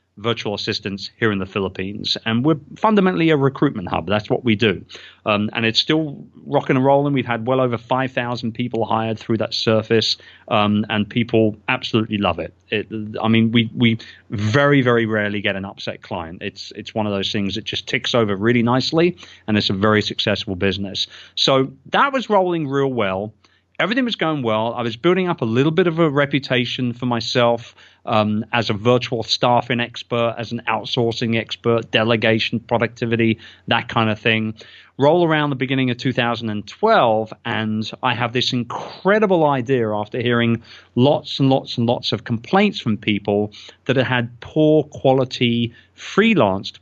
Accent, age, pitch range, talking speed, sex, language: British, 30-49, 110-130 Hz, 175 wpm, male, English